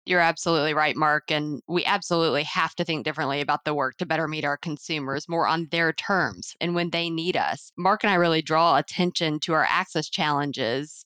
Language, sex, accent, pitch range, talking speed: English, female, American, 155-180 Hz, 205 wpm